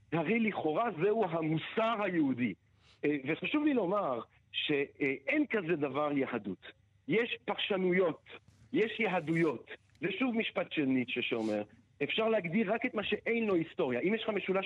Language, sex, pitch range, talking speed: Hebrew, male, 150-205 Hz, 135 wpm